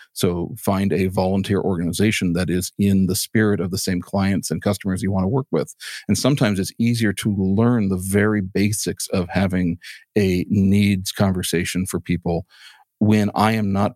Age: 50-69